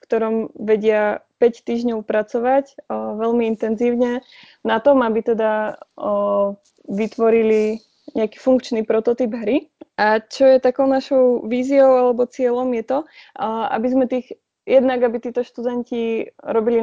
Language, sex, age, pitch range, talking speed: Slovak, female, 20-39, 220-250 Hz, 135 wpm